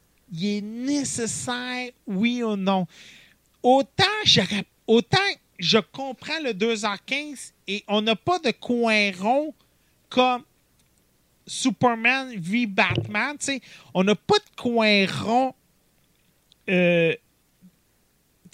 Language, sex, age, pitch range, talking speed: French, male, 40-59, 190-250 Hz, 105 wpm